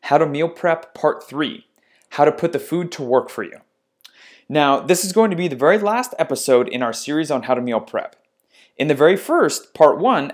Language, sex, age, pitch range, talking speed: English, male, 30-49, 125-165 Hz, 225 wpm